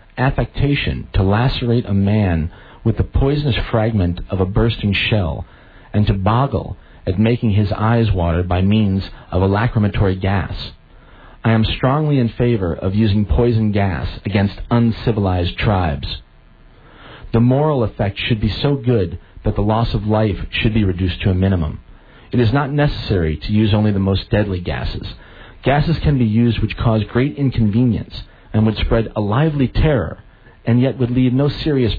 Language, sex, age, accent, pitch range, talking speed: English, male, 40-59, American, 95-120 Hz, 165 wpm